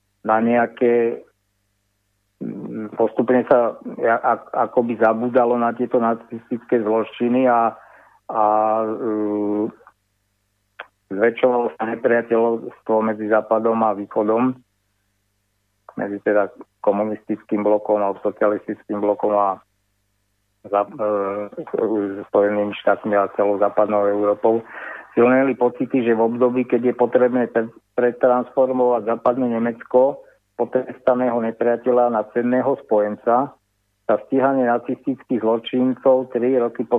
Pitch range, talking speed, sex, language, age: 105-120 Hz, 95 wpm, male, Slovak, 50-69